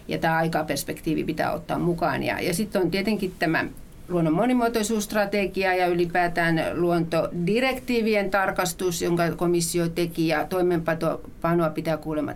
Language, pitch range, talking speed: Finnish, 160-190 Hz, 120 wpm